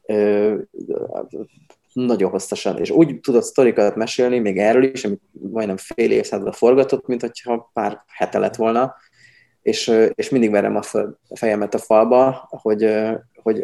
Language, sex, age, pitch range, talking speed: Hungarian, male, 20-39, 100-120 Hz, 130 wpm